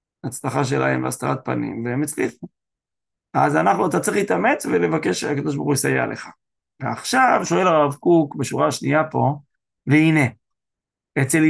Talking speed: 135 wpm